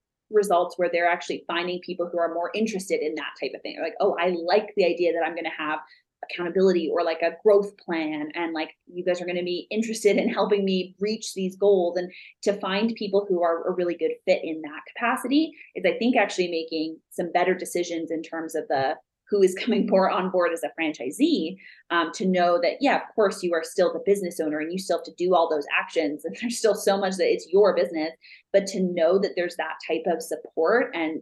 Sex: female